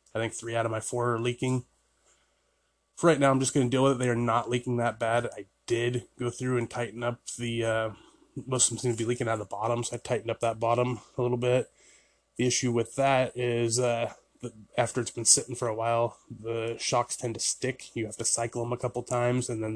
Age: 20-39